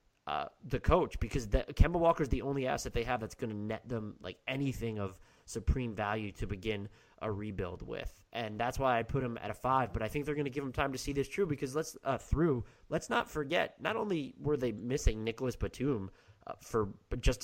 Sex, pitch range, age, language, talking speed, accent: male, 110-135 Hz, 20-39, English, 225 wpm, American